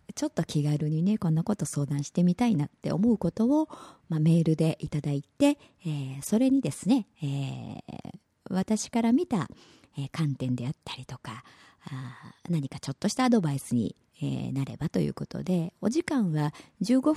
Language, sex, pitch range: Japanese, male, 140-220 Hz